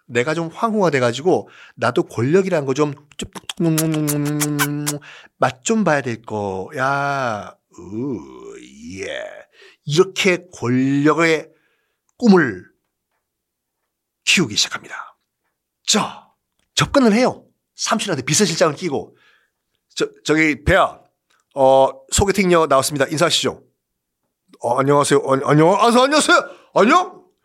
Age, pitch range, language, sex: 50-69, 135-210 Hz, Korean, male